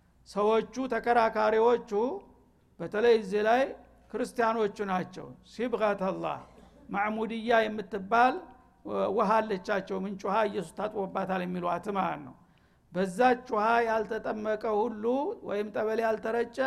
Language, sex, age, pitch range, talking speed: Amharic, male, 60-79, 210-250 Hz, 85 wpm